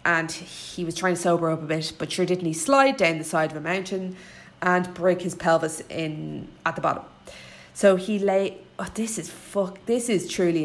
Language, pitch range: English, 160-195 Hz